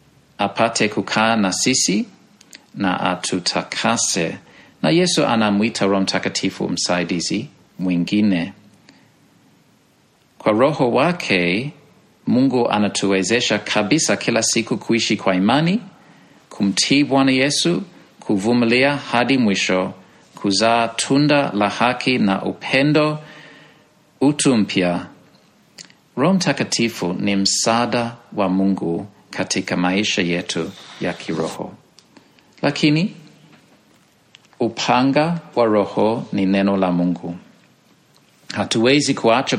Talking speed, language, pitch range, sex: 90 wpm, Swahili, 100-140 Hz, male